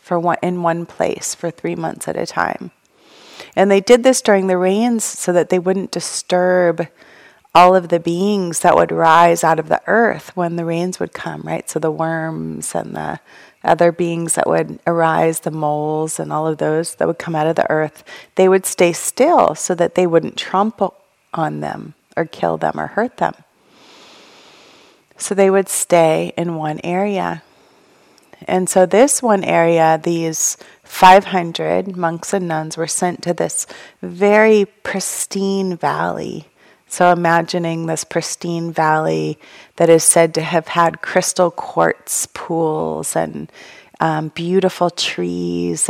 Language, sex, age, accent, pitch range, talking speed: English, female, 30-49, American, 160-185 Hz, 160 wpm